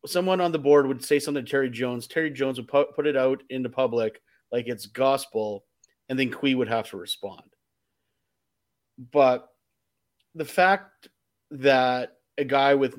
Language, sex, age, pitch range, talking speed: English, male, 30-49, 115-145 Hz, 160 wpm